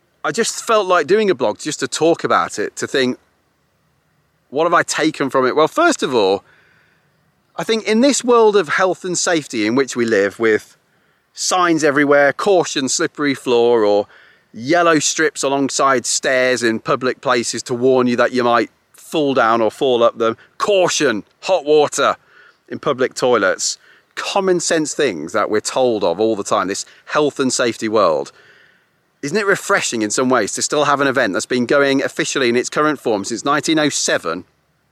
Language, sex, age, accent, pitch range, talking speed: English, male, 30-49, British, 125-170 Hz, 180 wpm